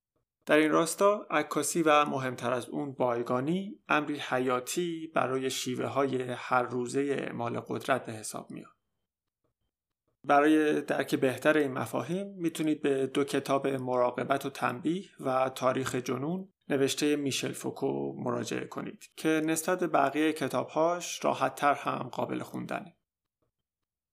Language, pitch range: Persian, 130-160 Hz